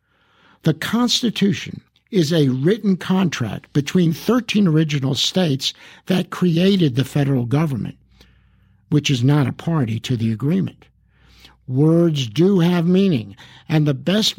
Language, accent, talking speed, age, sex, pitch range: English, American, 125 wpm, 60-79, male, 135-185 Hz